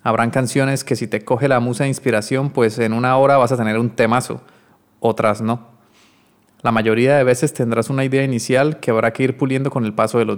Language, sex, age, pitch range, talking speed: Spanish, male, 30-49, 115-140 Hz, 225 wpm